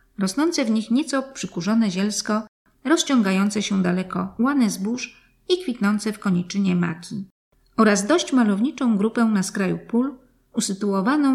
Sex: female